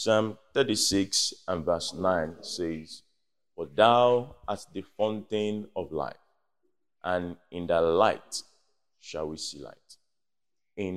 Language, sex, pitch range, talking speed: English, male, 95-120 Hz, 120 wpm